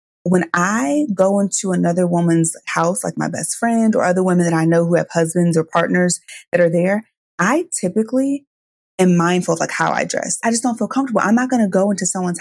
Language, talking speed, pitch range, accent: English, 220 wpm, 170-205 Hz, American